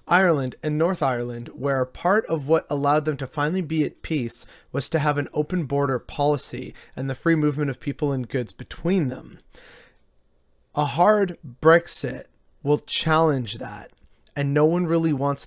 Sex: male